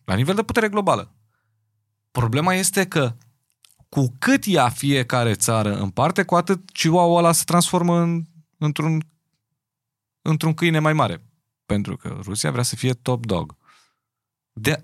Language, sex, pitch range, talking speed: Romanian, male, 125-175 Hz, 140 wpm